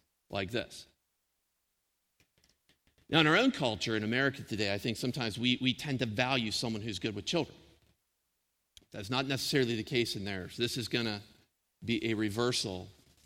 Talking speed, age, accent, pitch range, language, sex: 170 wpm, 50-69, American, 105-150 Hz, English, male